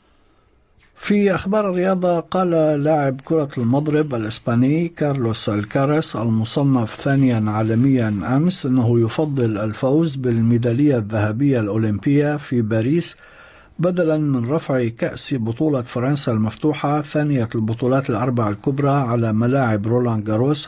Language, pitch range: Arabic, 115-155 Hz